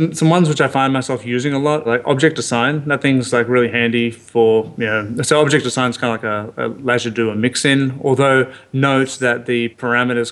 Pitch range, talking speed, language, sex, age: 115-130 Hz, 220 wpm, English, male, 30-49